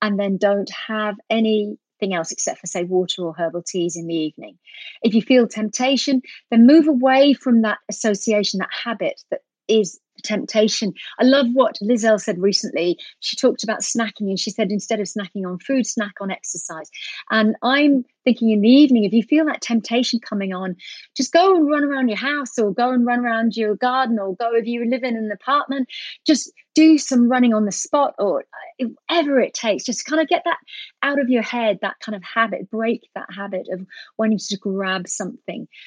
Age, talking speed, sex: 30-49, 200 wpm, female